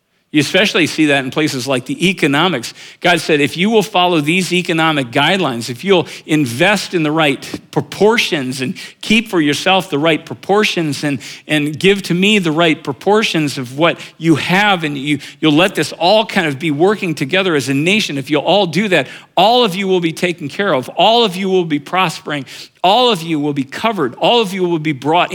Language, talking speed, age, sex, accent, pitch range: English, 210 wpm, 50-69, male, American, 145-185 Hz